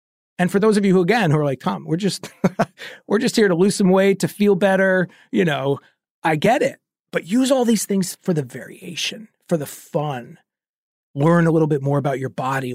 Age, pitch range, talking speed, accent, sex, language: 40-59, 170-220 Hz, 215 wpm, American, male, English